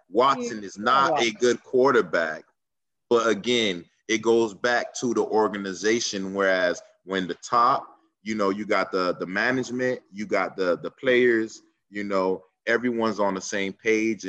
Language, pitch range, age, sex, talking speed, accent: English, 95-110 Hz, 20-39, male, 155 wpm, American